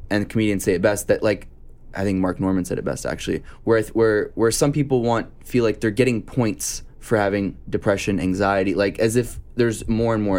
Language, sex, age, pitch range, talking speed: English, male, 20-39, 100-125 Hz, 215 wpm